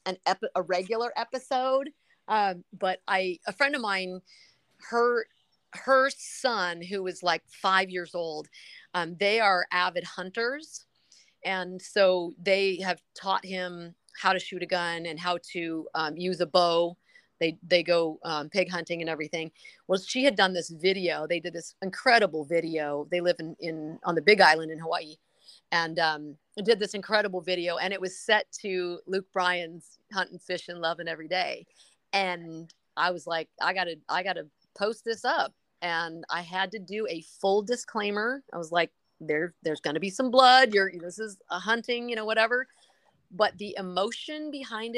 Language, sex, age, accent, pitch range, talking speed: English, female, 40-59, American, 170-210 Hz, 180 wpm